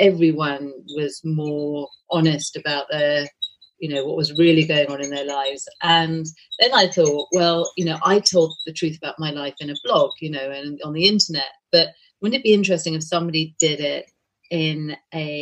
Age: 40-59